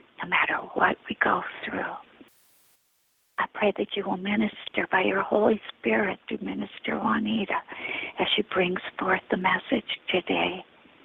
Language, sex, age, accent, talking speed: English, female, 50-69, American, 140 wpm